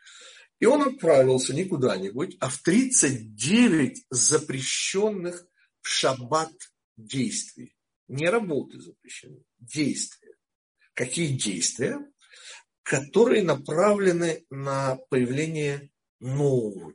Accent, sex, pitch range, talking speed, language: native, male, 130-190 Hz, 80 wpm, Russian